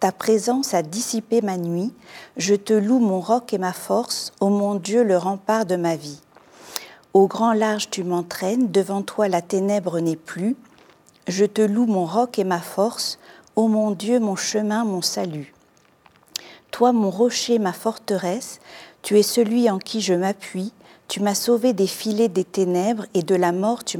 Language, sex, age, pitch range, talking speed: French, female, 40-59, 180-225 Hz, 180 wpm